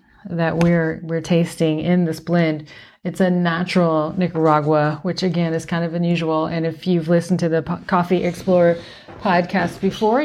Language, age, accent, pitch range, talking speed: English, 30-49, American, 155-180 Hz, 165 wpm